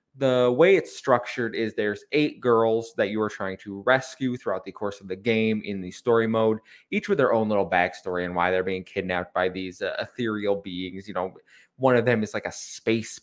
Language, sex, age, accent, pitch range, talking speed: English, male, 20-39, American, 100-125 Hz, 220 wpm